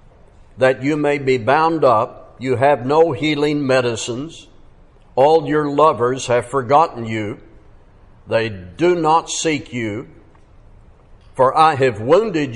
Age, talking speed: 60-79, 125 wpm